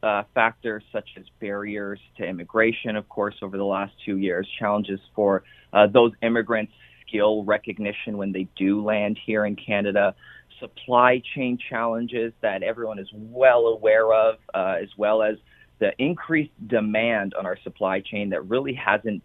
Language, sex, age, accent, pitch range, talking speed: English, male, 30-49, American, 100-115 Hz, 160 wpm